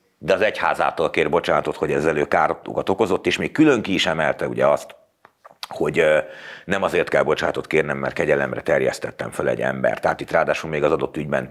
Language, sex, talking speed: Hungarian, male, 190 wpm